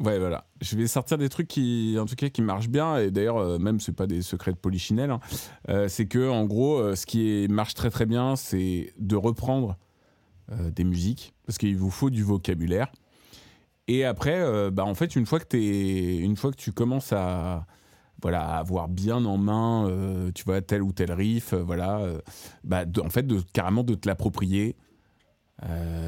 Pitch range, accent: 95-120 Hz, French